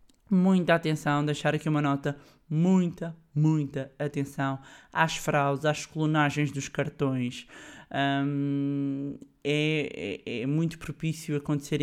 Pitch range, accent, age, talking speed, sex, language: 140-155 Hz, Brazilian, 20-39, 100 wpm, male, Portuguese